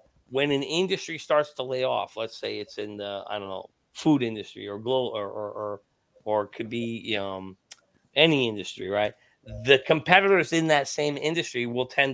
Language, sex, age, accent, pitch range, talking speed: English, male, 40-59, American, 120-155 Hz, 185 wpm